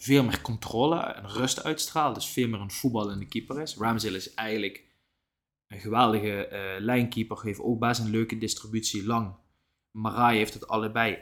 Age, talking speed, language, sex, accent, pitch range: 20-39, 170 wpm, Dutch, male, Dutch, 105-135 Hz